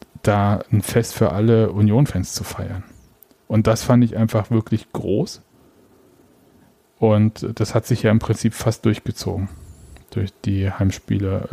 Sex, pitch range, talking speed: male, 100-115 Hz, 140 wpm